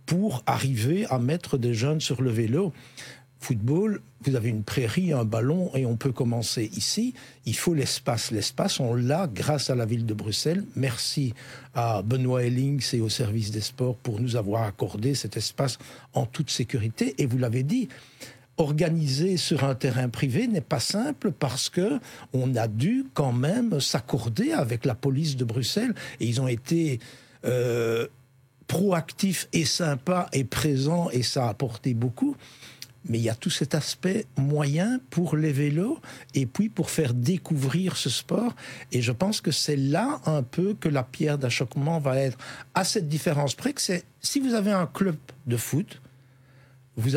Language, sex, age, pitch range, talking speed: French, male, 60-79, 125-165 Hz, 175 wpm